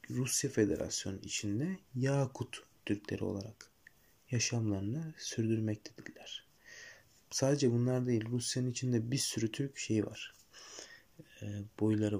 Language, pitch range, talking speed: Turkish, 105-125 Hz, 95 wpm